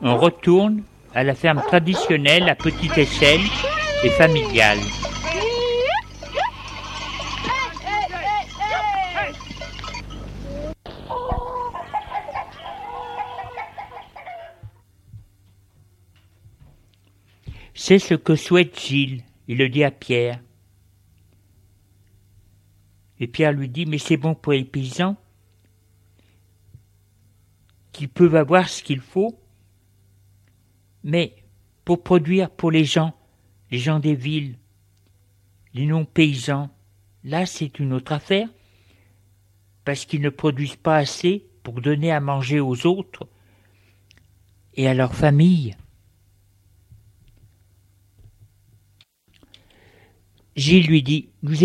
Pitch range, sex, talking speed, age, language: 100-160 Hz, male, 85 wpm, 60-79, French